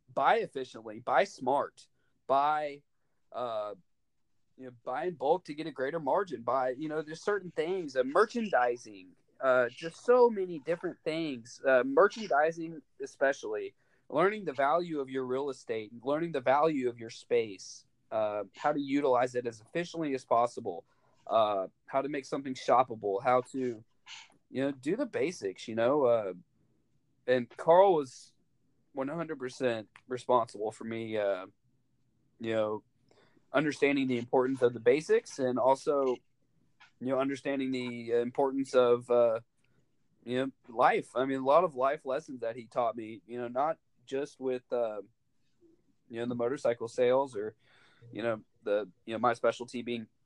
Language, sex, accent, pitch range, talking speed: English, male, American, 120-150 Hz, 155 wpm